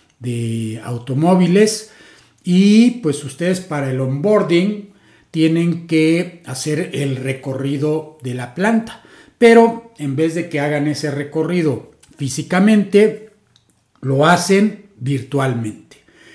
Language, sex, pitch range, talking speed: Spanish, male, 130-180 Hz, 105 wpm